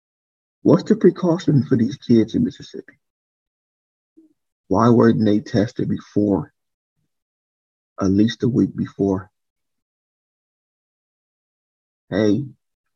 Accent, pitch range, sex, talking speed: American, 90-120 Hz, male, 90 wpm